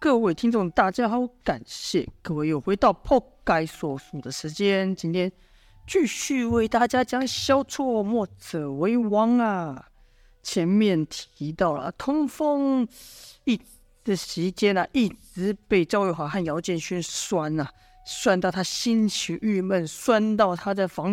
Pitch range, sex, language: 175-250 Hz, female, Chinese